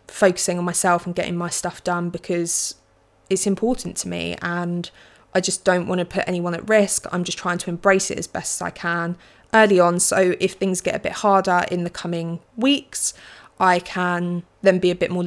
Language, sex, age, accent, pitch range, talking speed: English, female, 20-39, British, 175-210 Hz, 210 wpm